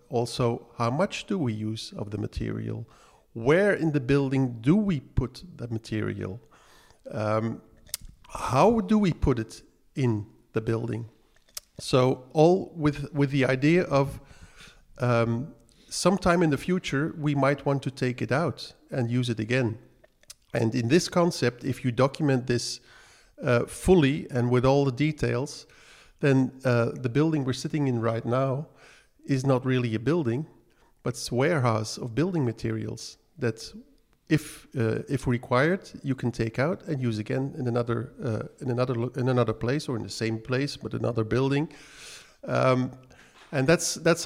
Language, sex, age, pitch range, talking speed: English, male, 50-69, 120-145 Hz, 160 wpm